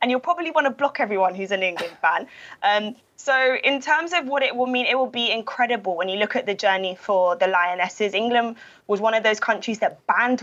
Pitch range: 195-240 Hz